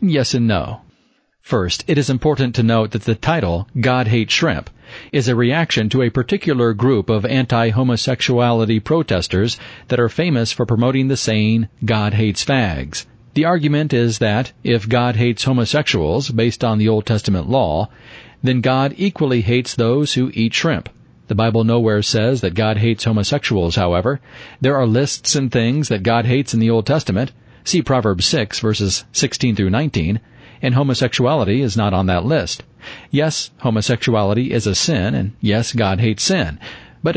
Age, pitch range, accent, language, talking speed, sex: 40-59, 110-135 Hz, American, English, 165 wpm, male